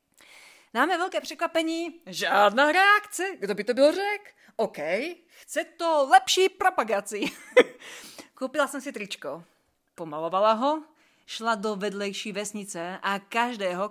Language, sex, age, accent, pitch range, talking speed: Czech, female, 30-49, native, 190-265 Hz, 115 wpm